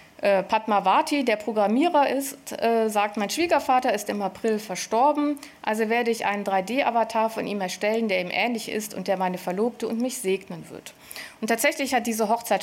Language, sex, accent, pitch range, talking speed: German, female, German, 205-245 Hz, 170 wpm